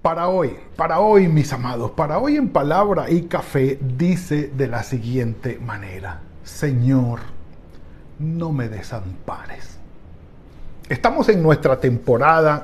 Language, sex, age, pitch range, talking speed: Spanish, male, 40-59, 120-155 Hz, 120 wpm